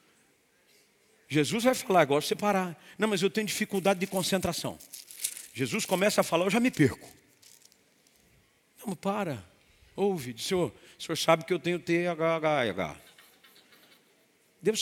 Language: Portuguese